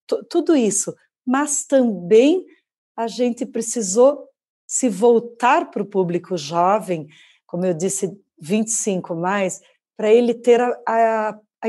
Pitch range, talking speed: 185-235 Hz, 120 wpm